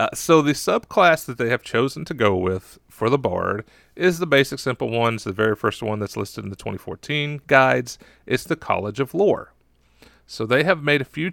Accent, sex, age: American, male, 40-59